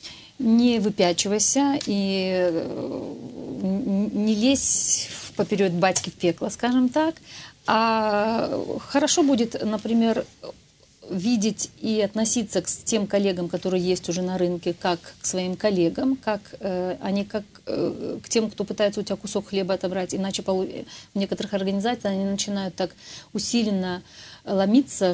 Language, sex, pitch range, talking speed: Russian, female, 185-230 Hz, 125 wpm